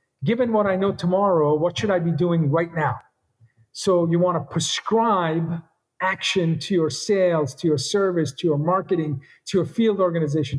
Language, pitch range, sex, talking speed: English, 165-225 Hz, male, 175 wpm